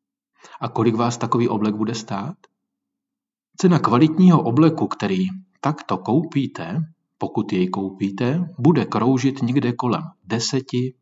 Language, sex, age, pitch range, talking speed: Czech, male, 40-59, 110-160 Hz, 115 wpm